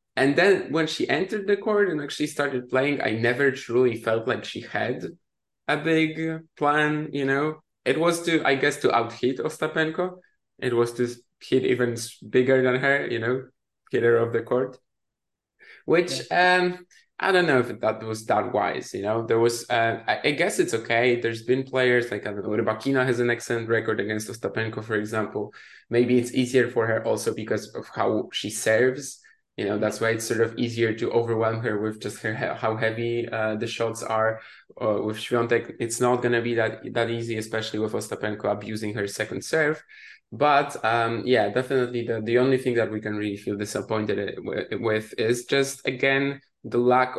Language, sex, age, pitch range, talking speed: English, male, 20-39, 110-130 Hz, 185 wpm